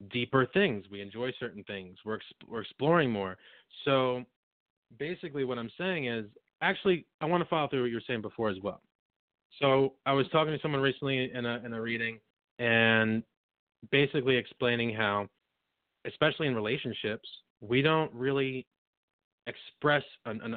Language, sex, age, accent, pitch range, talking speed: English, male, 30-49, American, 110-135 Hz, 160 wpm